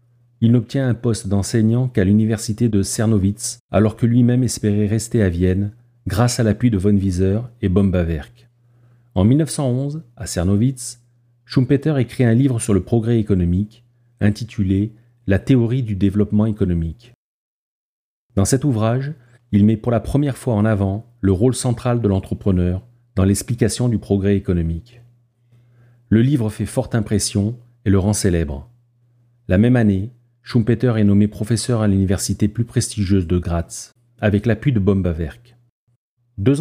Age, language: 40-59, French